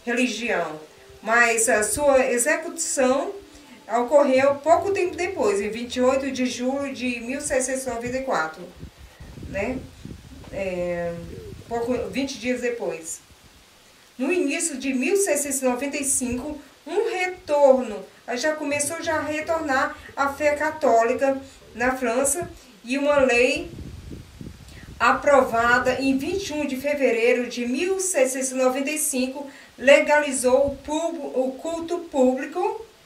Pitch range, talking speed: 245-290 Hz, 95 wpm